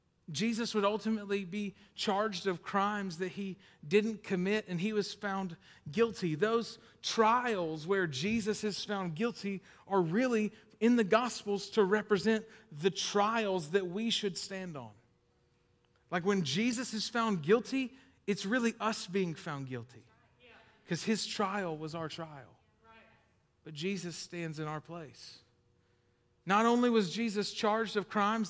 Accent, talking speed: American, 145 wpm